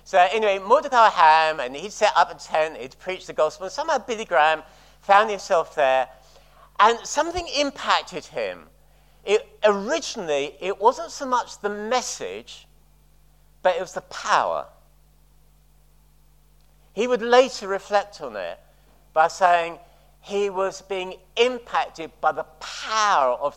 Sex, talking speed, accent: male, 135 wpm, British